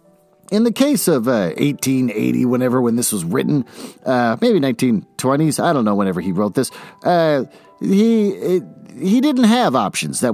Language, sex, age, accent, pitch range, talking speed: English, male, 50-69, American, 130-195 Hz, 170 wpm